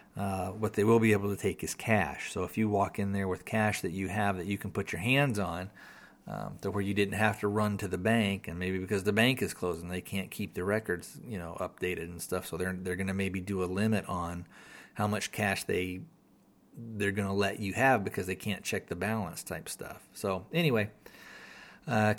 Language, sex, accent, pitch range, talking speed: English, male, American, 100-115 Hz, 235 wpm